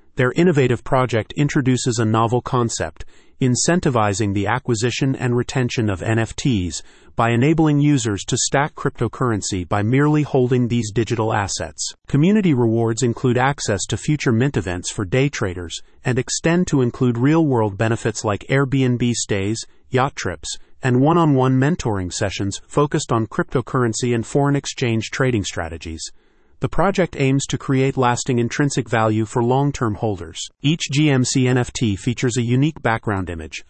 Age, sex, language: 30-49, male, English